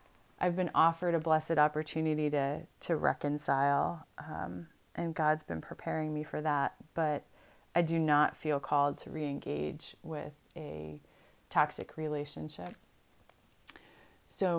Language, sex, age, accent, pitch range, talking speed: English, female, 30-49, American, 150-180 Hz, 125 wpm